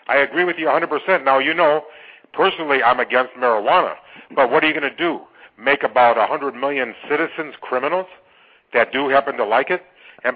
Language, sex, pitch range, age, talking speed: English, male, 130-180 Hz, 50-69, 185 wpm